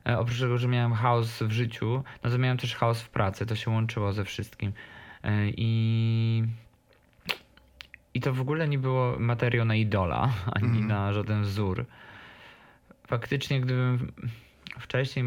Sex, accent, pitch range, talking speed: male, native, 110-130 Hz, 140 wpm